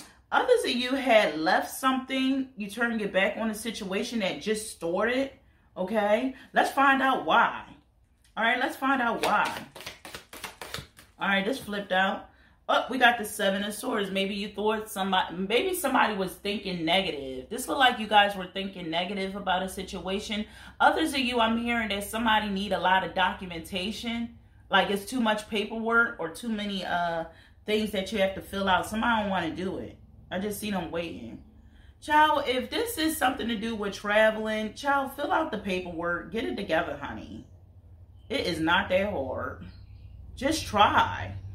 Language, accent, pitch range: English, American, 175-235 Hz